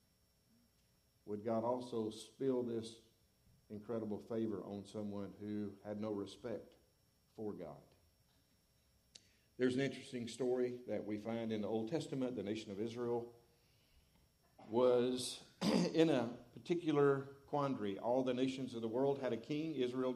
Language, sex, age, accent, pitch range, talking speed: English, male, 50-69, American, 115-150 Hz, 135 wpm